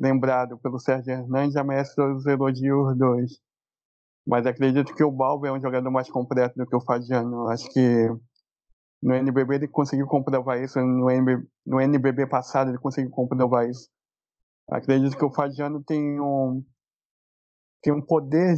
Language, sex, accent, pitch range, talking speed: Portuguese, male, Brazilian, 125-140 Hz, 160 wpm